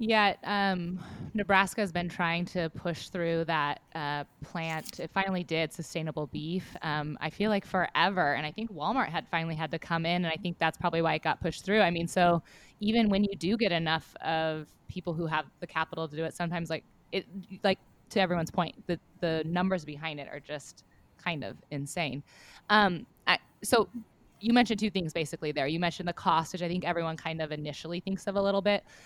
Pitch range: 160-200 Hz